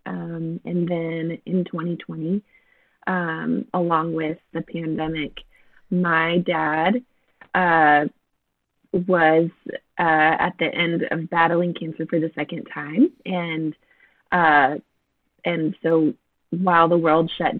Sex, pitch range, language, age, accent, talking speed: female, 160-180 Hz, English, 20-39, American, 115 wpm